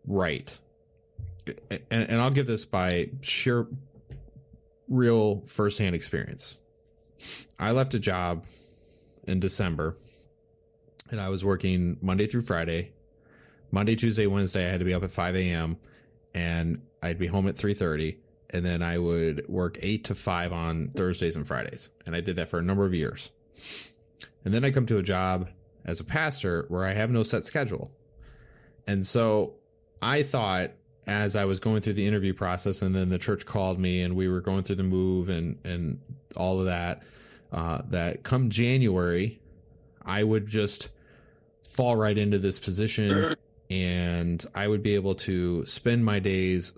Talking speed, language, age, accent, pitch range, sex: 165 wpm, English, 30-49, American, 90-110 Hz, male